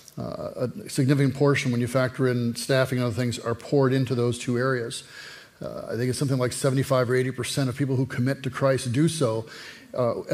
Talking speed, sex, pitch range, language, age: 210 wpm, male, 125-140 Hz, English, 40-59